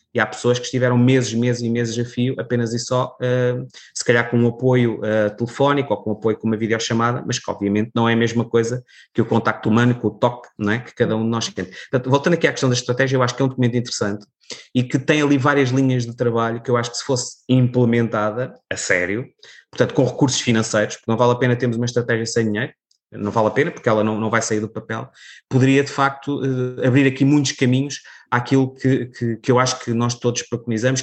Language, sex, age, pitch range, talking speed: Portuguese, male, 20-39, 110-130 Hz, 240 wpm